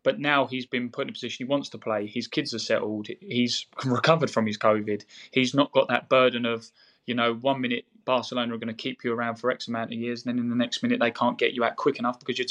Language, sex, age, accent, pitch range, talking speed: English, male, 20-39, British, 115-135 Hz, 280 wpm